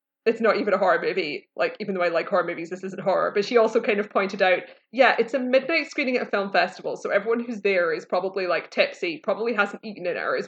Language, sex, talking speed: English, female, 260 wpm